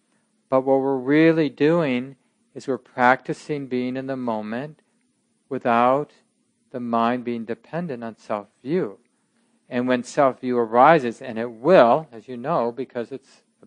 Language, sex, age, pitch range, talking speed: English, male, 50-69, 120-170 Hz, 140 wpm